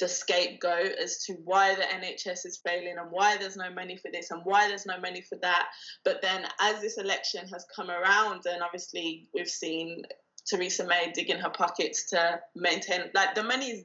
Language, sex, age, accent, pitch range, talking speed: English, female, 20-39, British, 175-205 Hz, 195 wpm